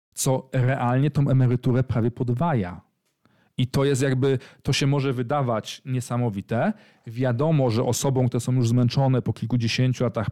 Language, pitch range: Polish, 120-140 Hz